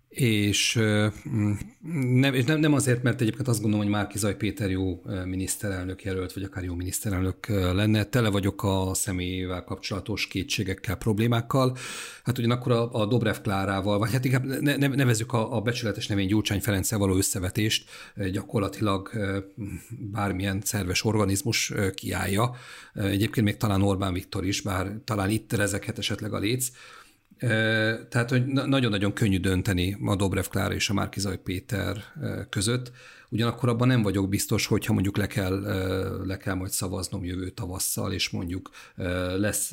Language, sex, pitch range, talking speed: Hungarian, male, 95-115 Hz, 135 wpm